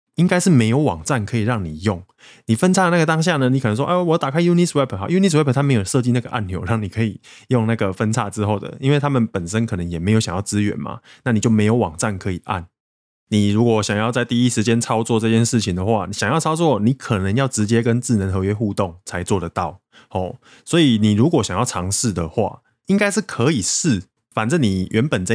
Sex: male